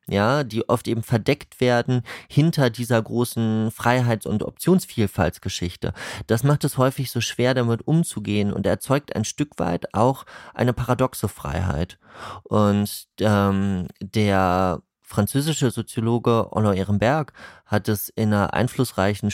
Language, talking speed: German, 125 wpm